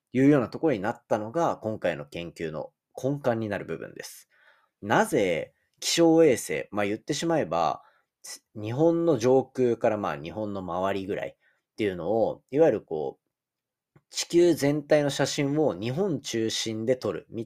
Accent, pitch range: native, 110-175 Hz